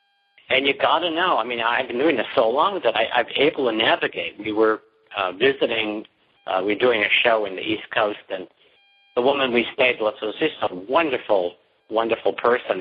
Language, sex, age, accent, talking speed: English, male, 60-79, American, 210 wpm